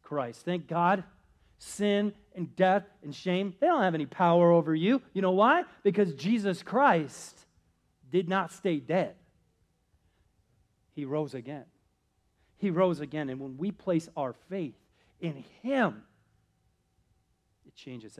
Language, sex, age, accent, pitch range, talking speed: English, male, 40-59, American, 140-225 Hz, 135 wpm